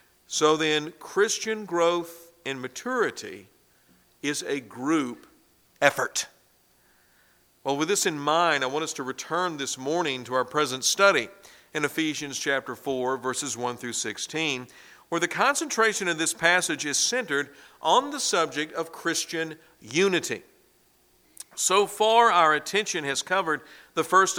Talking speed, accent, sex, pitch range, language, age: 140 wpm, American, male, 155-205 Hz, English, 50-69